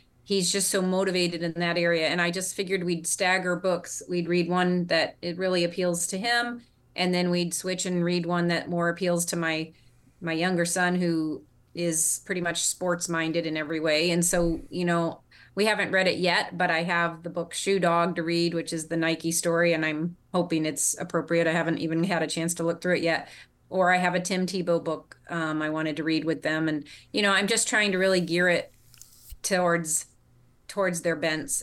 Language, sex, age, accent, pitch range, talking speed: English, female, 30-49, American, 155-180 Hz, 215 wpm